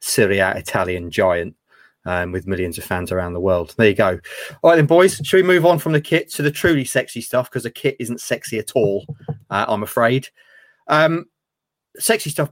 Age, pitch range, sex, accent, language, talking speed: 30-49, 105-145 Hz, male, British, English, 205 wpm